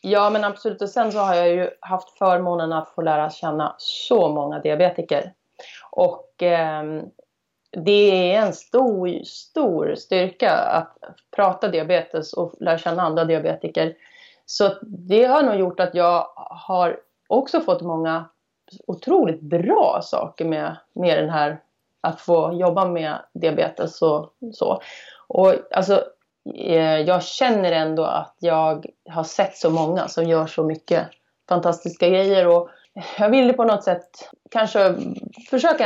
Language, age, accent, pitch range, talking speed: Swedish, 30-49, native, 170-200 Hz, 140 wpm